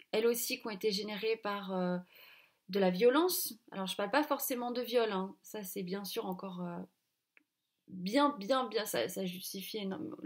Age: 20-39